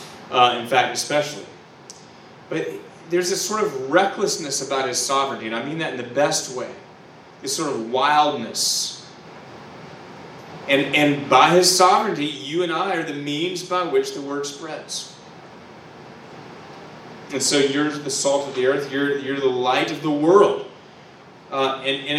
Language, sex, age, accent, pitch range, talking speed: English, male, 30-49, American, 140-185 Hz, 160 wpm